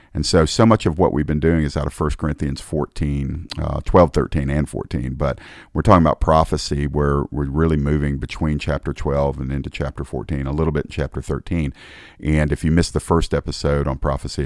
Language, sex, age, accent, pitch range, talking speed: English, male, 50-69, American, 75-90 Hz, 210 wpm